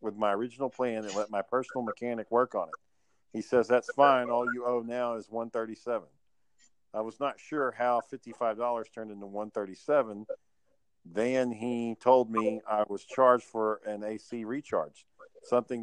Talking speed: 165 wpm